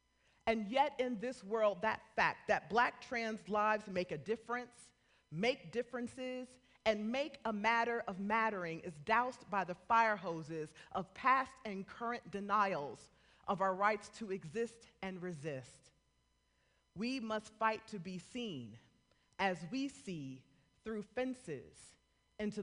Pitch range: 145-220 Hz